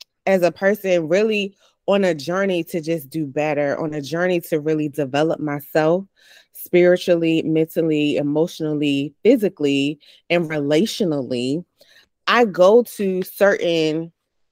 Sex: female